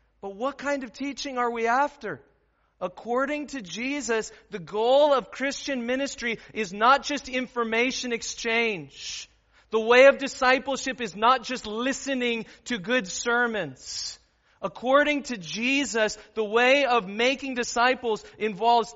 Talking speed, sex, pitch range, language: 130 wpm, male, 165-240 Hz, English